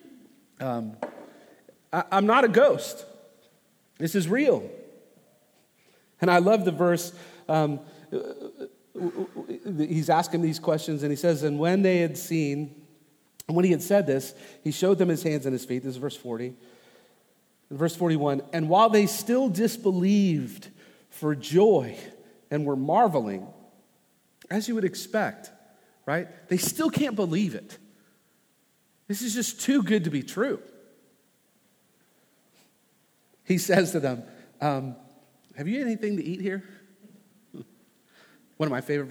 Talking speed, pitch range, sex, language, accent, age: 135 wpm, 145-195 Hz, male, English, American, 40-59